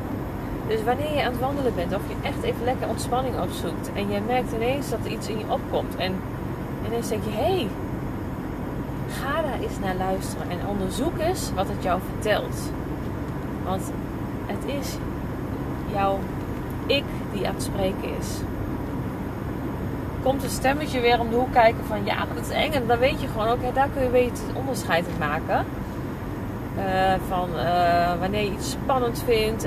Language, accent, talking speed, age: Dutch, Dutch, 180 wpm, 30-49